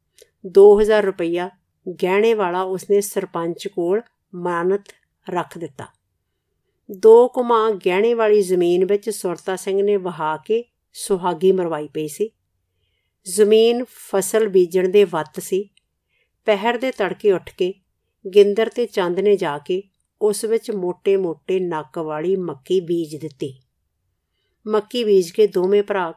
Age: 50-69